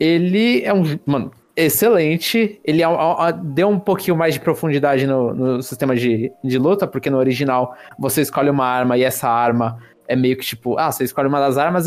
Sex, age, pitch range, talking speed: male, 20-39, 125-155 Hz, 190 wpm